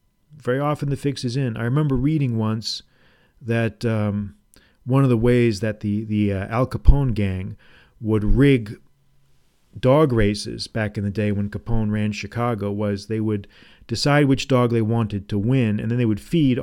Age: 40-59